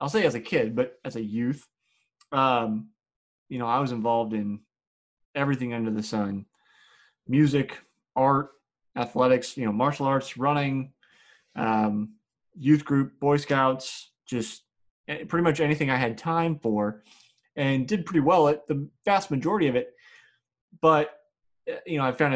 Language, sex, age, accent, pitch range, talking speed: English, male, 20-39, American, 120-150 Hz, 150 wpm